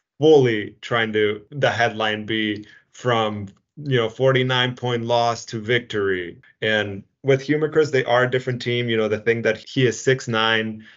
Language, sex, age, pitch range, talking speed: English, male, 20-39, 105-120 Hz, 165 wpm